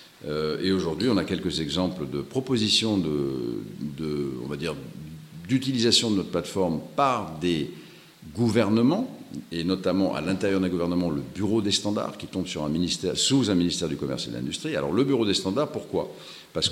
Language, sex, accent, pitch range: English, male, French, 85-120 Hz